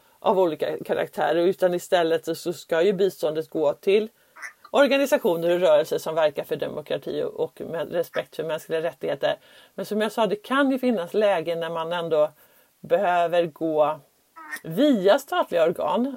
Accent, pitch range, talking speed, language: Swedish, 170-275 Hz, 150 wpm, English